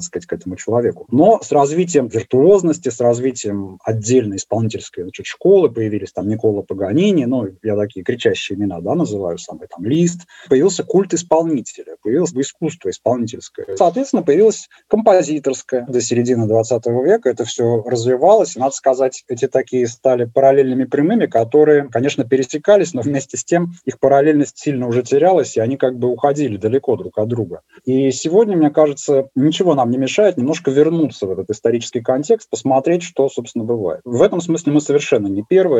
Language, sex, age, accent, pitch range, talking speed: Russian, male, 20-39, native, 110-145 Hz, 165 wpm